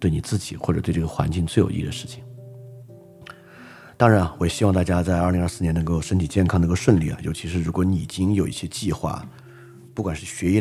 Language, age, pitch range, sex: Chinese, 30-49, 90-125 Hz, male